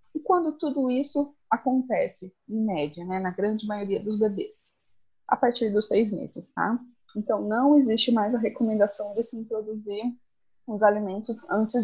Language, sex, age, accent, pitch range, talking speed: Portuguese, female, 20-39, Brazilian, 205-275 Hz, 155 wpm